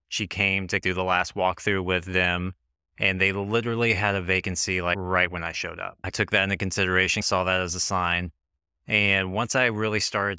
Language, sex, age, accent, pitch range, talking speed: English, male, 20-39, American, 90-105 Hz, 210 wpm